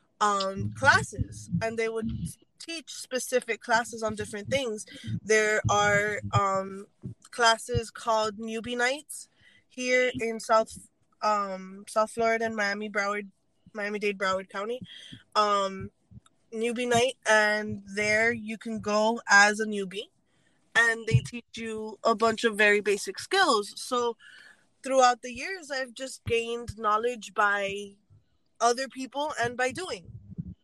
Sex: female